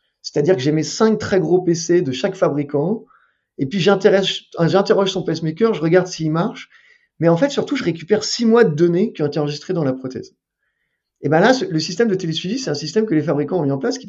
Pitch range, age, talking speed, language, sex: 150-215 Hz, 30-49, 240 wpm, French, male